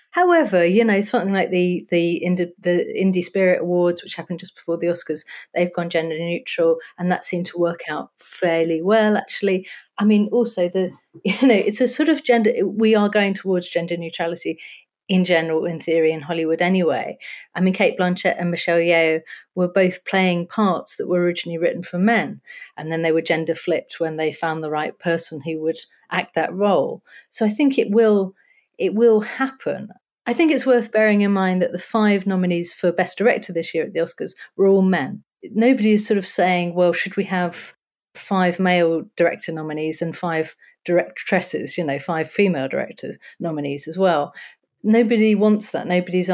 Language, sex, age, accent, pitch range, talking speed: English, female, 40-59, British, 170-210 Hz, 190 wpm